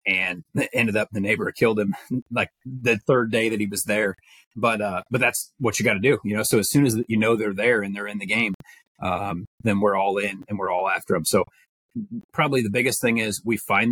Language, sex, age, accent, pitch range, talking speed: English, male, 30-49, American, 100-115 Hz, 245 wpm